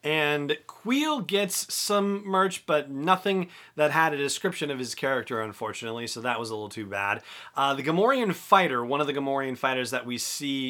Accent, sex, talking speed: American, male, 190 wpm